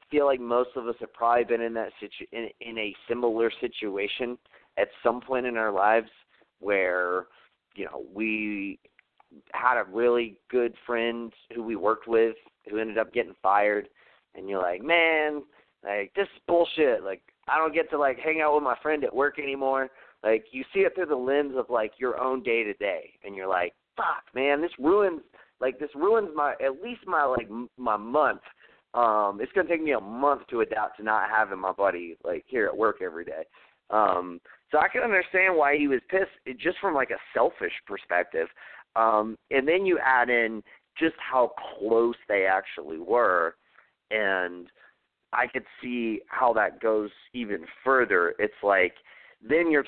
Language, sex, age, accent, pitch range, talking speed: English, male, 30-49, American, 105-145 Hz, 185 wpm